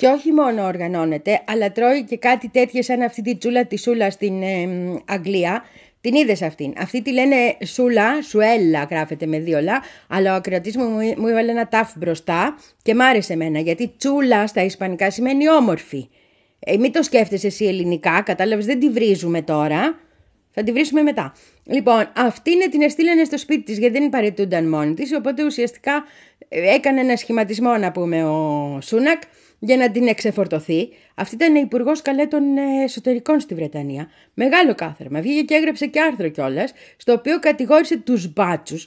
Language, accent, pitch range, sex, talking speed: Greek, Spanish, 195-285 Hz, female, 170 wpm